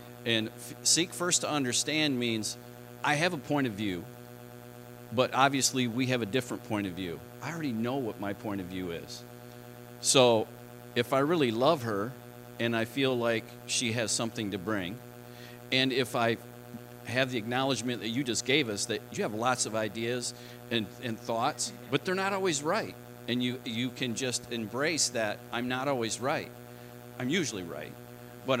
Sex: male